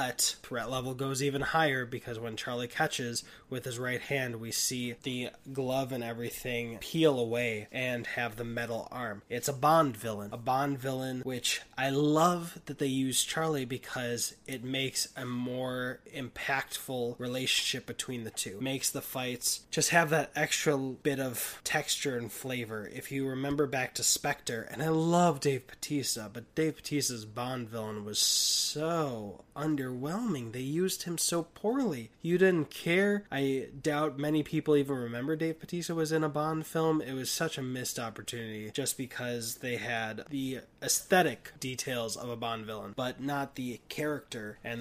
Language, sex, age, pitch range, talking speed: English, male, 20-39, 120-150 Hz, 170 wpm